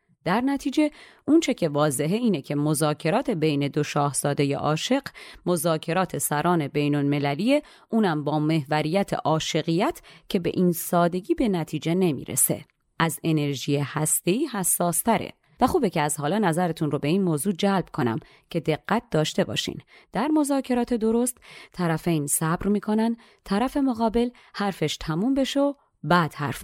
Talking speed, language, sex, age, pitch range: 135 wpm, Persian, female, 30-49, 155-240 Hz